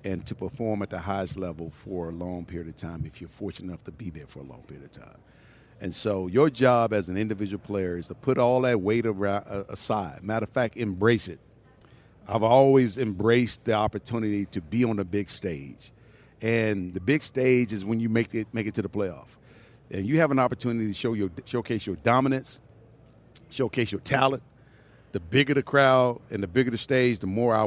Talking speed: 210 wpm